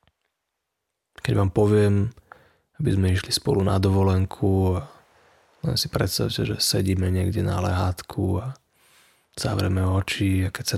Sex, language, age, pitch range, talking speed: male, Slovak, 20-39, 95-120 Hz, 130 wpm